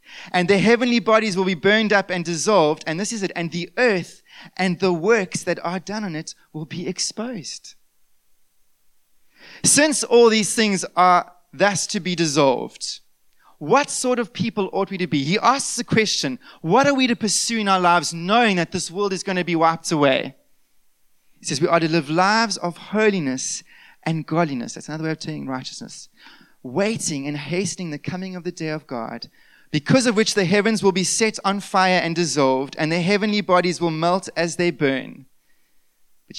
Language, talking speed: English, 190 wpm